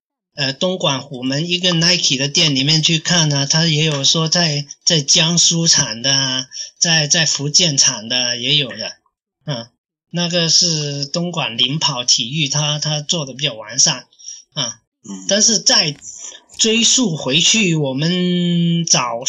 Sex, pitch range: male, 145-180 Hz